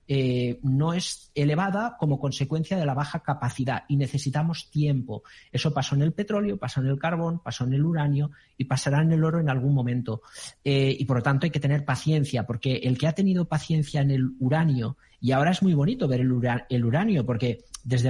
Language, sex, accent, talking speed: Spanish, male, Spanish, 210 wpm